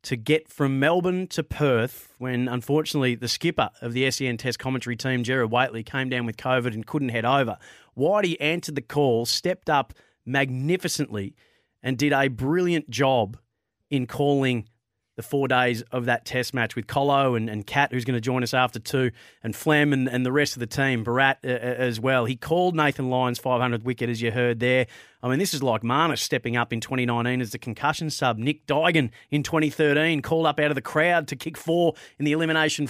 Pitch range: 125-150 Hz